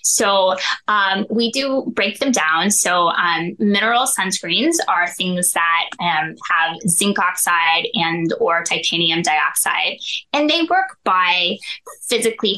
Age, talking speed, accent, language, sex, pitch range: 10-29, 130 wpm, American, English, female, 165-230 Hz